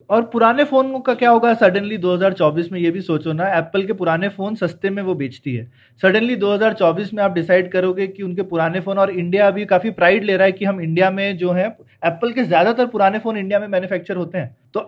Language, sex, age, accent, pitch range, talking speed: Hindi, male, 30-49, native, 180-235 Hz, 230 wpm